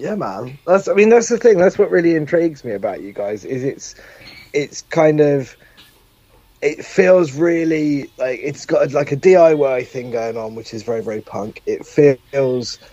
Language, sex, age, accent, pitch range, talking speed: English, male, 20-39, British, 120-165 Hz, 190 wpm